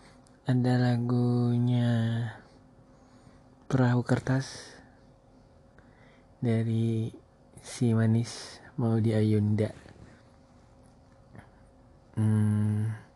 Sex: male